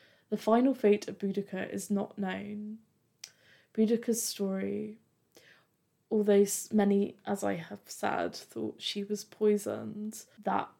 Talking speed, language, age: 115 wpm, English, 20-39